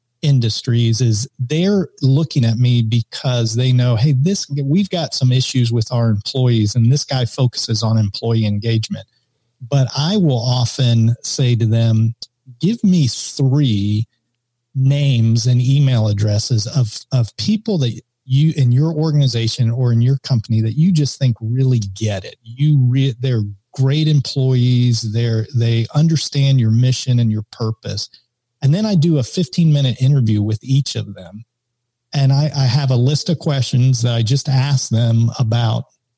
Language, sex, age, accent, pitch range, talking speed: English, male, 40-59, American, 115-140 Hz, 160 wpm